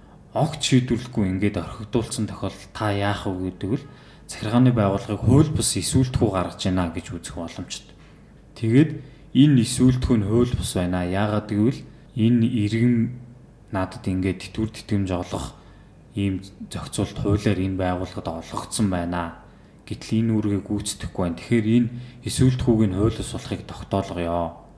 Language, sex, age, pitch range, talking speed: English, male, 20-39, 95-120 Hz, 130 wpm